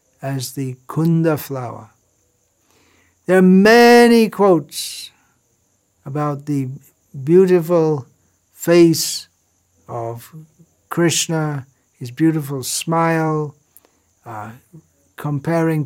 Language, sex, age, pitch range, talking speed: English, male, 60-79, 125-165 Hz, 70 wpm